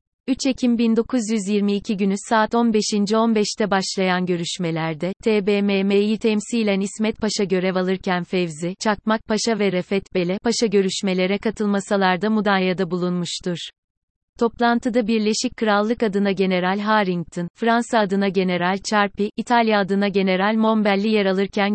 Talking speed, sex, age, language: 115 wpm, female, 30-49, Turkish